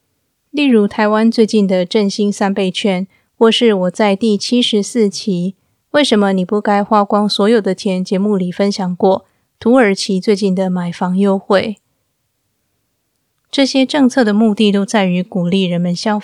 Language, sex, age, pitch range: Chinese, female, 20-39, 185-220 Hz